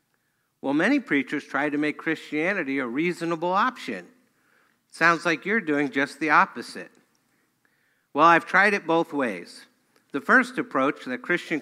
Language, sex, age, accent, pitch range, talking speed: English, male, 50-69, American, 130-170 Hz, 145 wpm